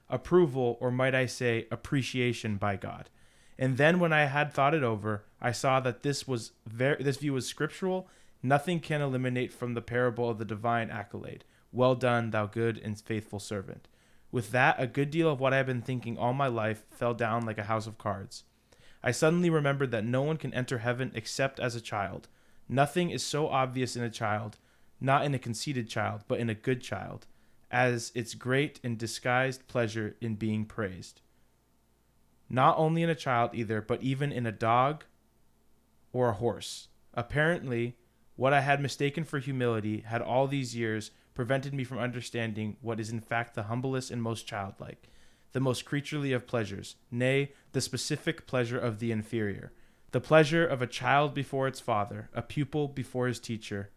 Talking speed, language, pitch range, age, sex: 185 wpm, English, 115-135 Hz, 20-39, male